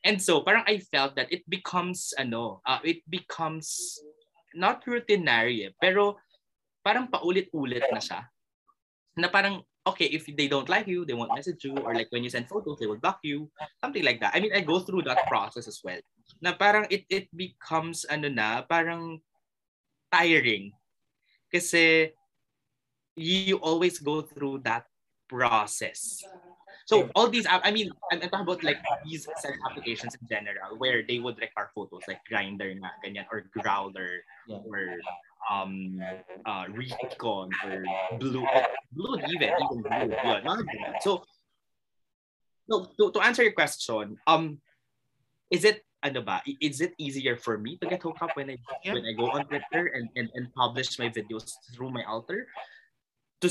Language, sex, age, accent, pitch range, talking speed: English, male, 20-39, Filipino, 125-180 Hz, 160 wpm